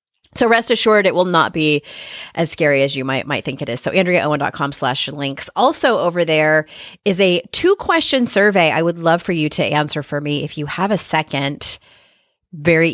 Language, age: English, 30-49